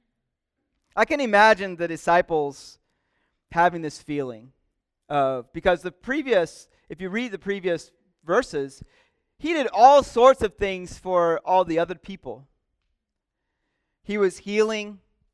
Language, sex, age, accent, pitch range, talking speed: English, male, 40-59, American, 140-190 Hz, 125 wpm